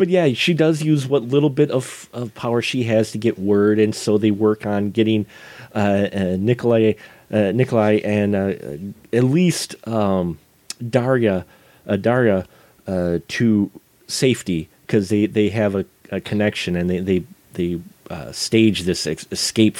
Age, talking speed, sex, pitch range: 40-59, 160 wpm, male, 105-145 Hz